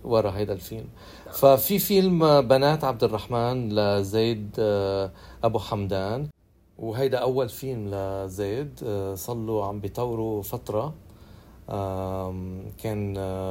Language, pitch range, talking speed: Arabic, 100-120 Hz, 90 wpm